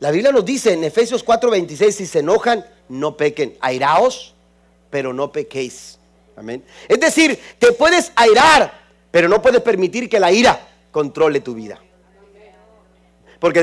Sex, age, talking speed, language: male, 40-59, 145 wpm, Spanish